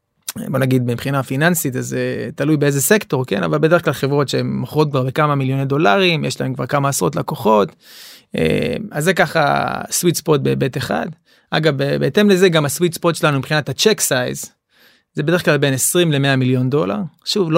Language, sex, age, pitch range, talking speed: Hebrew, male, 30-49, 135-175 Hz, 180 wpm